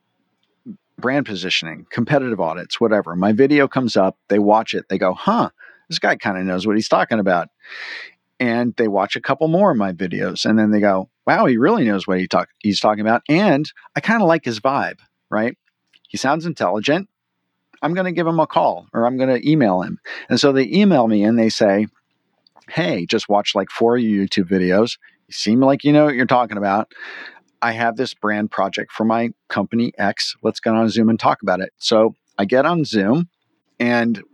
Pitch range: 100-135 Hz